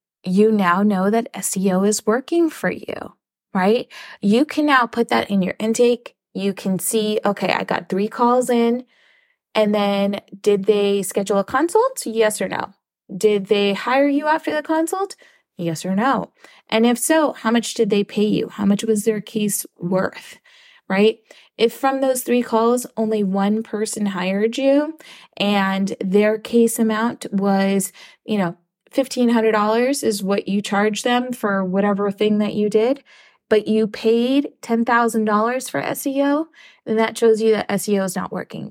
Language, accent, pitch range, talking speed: English, American, 200-235 Hz, 165 wpm